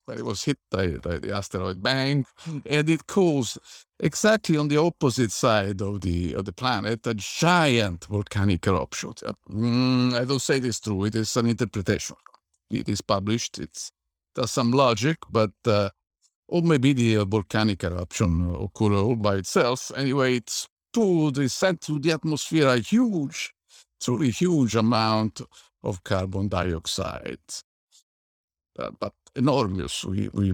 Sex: male